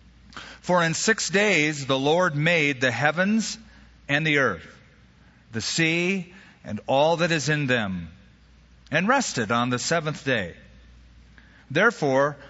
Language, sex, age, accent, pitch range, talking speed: English, male, 40-59, American, 125-170 Hz, 130 wpm